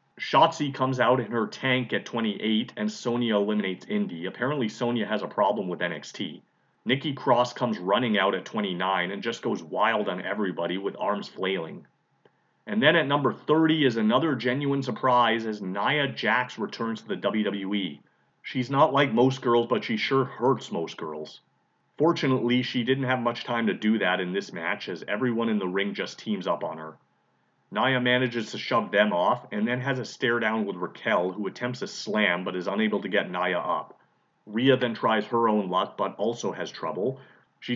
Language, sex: English, male